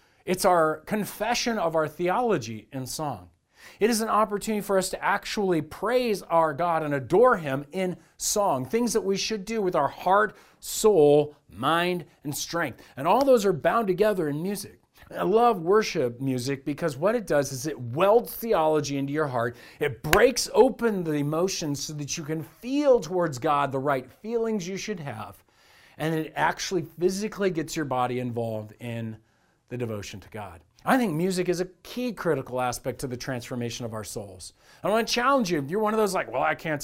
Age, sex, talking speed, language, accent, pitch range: 40-59, male, 190 wpm, English, American, 135-200 Hz